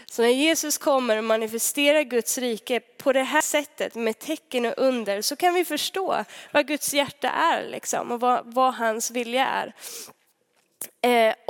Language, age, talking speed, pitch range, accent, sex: Swedish, 20-39, 165 wpm, 225-285 Hz, native, female